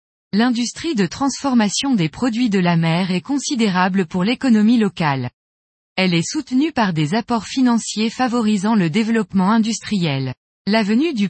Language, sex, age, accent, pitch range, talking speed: French, female, 20-39, French, 180-245 Hz, 140 wpm